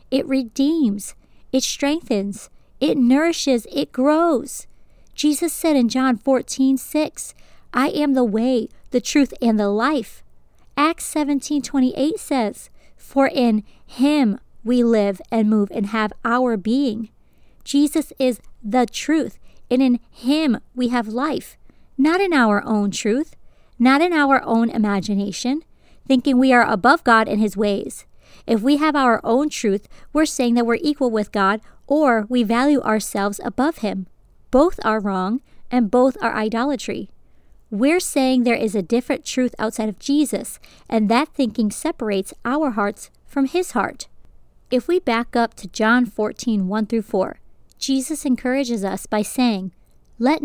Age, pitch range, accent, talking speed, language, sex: 40-59, 220-275 Hz, American, 145 wpm, English, female